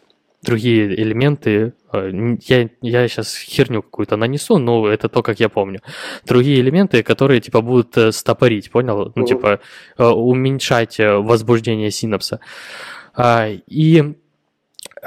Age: 20-39